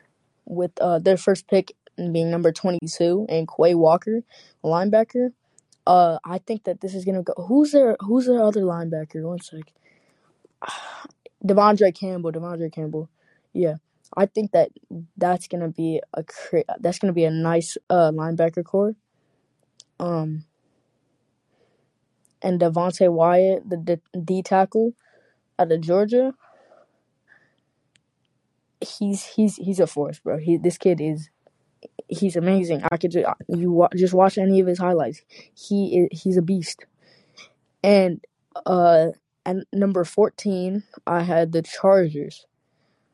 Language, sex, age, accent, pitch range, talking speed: English, female, 20-39, American, 170-200 Hz, 135 wpm